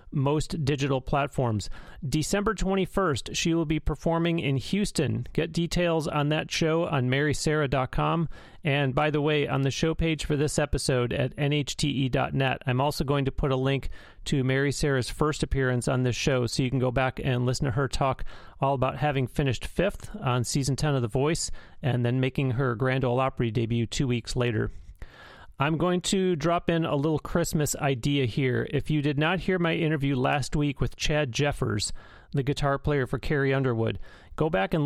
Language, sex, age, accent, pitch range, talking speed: English, male, 40-59, American, 130-155 Hz, 190 wpm